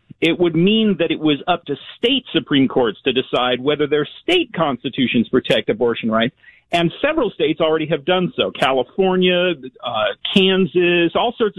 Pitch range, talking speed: 150-215 Hz, 165 wpm